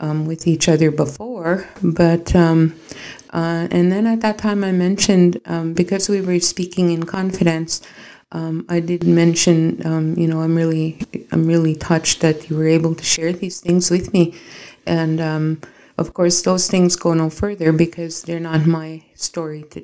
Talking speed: 180 wpm